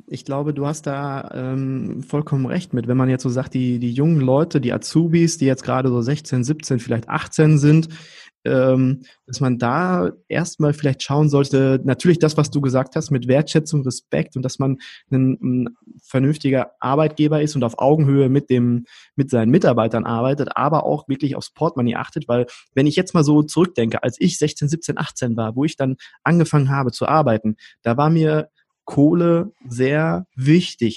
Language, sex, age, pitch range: German, male, 20-39, 125-150 Hz